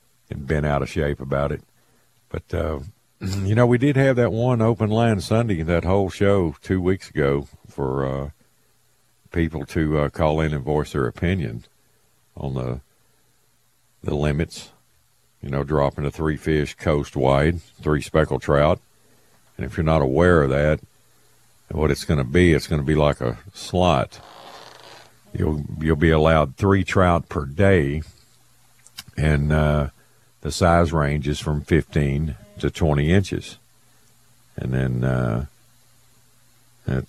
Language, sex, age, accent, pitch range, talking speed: English, male, 50-69, American, 70-90 Hz, 145 wpm